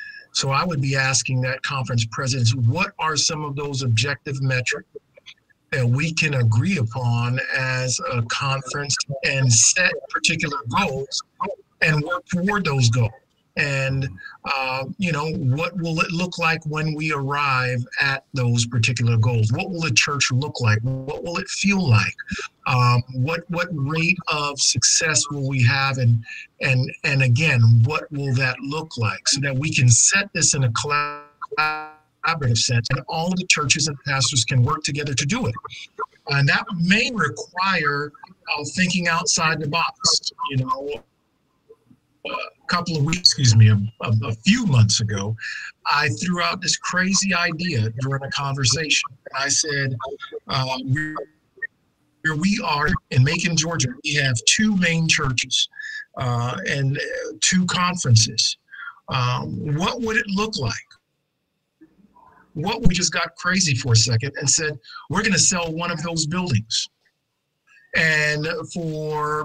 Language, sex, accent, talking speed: English, male, American, 155 wpm